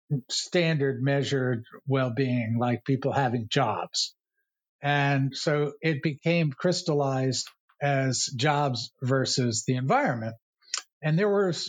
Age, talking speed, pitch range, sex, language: 60-79, 105 wpm, 135-170 Hz, male, English